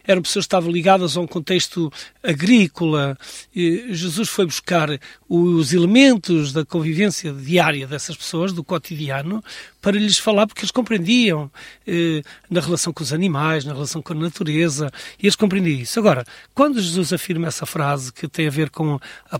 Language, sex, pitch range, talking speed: Portuguese, male, 150-200 Hz, 165 wpm